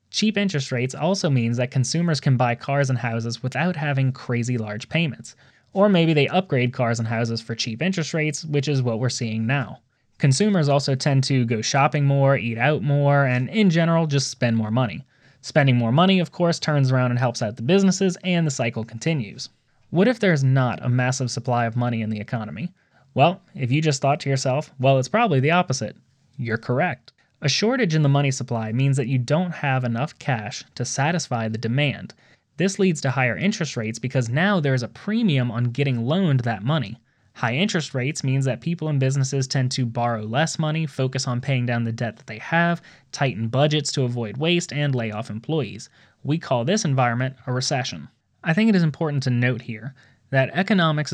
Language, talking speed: English, 205 wpm